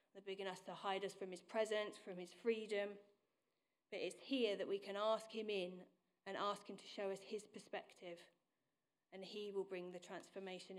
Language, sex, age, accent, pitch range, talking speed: English, female, 30-49, British, 180-200 Hz, 195 wpm